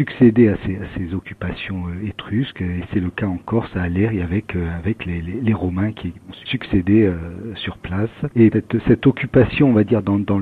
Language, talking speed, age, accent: French, 205 wpm, 50-69, French